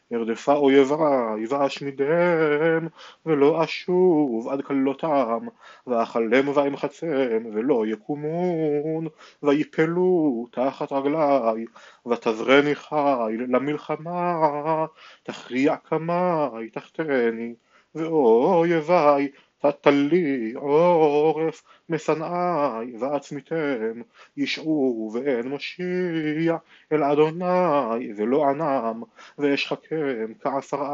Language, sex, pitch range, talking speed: Hebrew, male, 135-160 Hz, 70 wpm